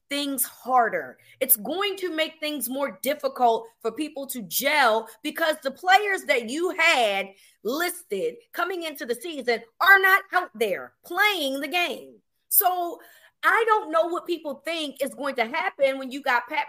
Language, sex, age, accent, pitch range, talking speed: English, female, 30-49, American, 250-330 Hz, 165 wpm